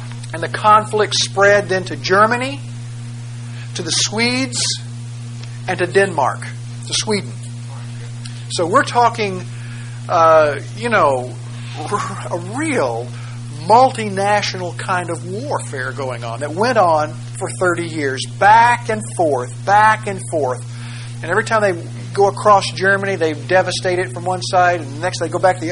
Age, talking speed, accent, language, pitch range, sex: 50-69, 140 wpm, American, English, 120-160 Hz, male